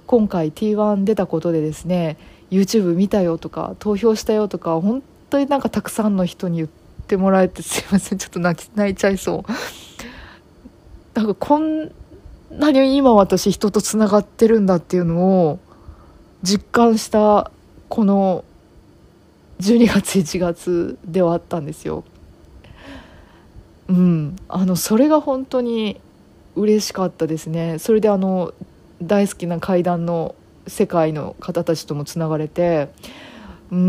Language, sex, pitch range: Japanese, female, 170-215 Hz